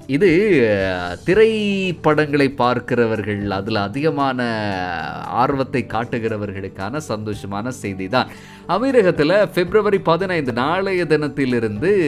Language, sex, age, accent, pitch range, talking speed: Tamil, male, 30-49, native, 115-170 Hz, 70 wpm